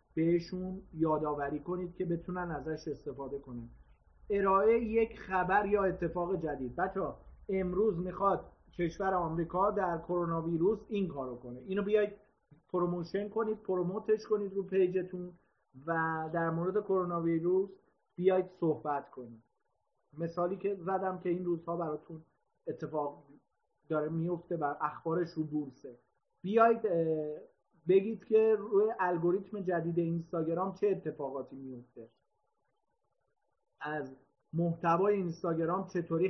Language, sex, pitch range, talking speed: Persian, male, 155-195 Hz, 115 wpm